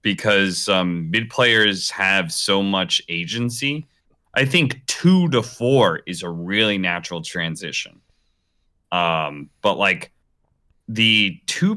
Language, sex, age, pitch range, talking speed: English, male, 30-49, 90-120 Hz, 115 wpm